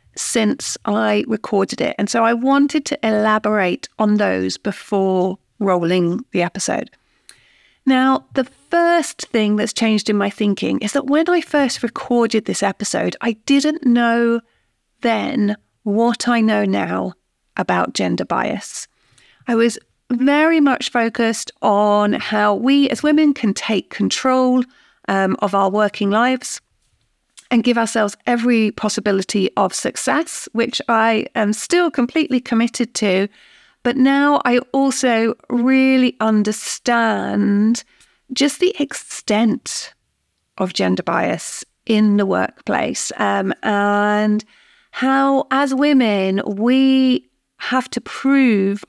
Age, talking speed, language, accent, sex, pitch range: 40-59, 125 wpm, English, British, female, 210-265 Hz